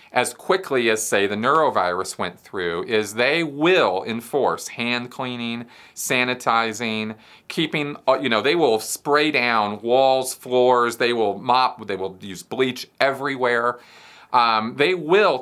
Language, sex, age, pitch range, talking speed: English, male, 40-59, 105-145 Hz, 135 wpm